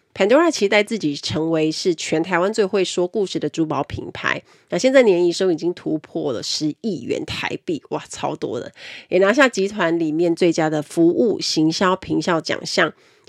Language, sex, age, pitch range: Chinese, female, 30-49, 165-220 Hz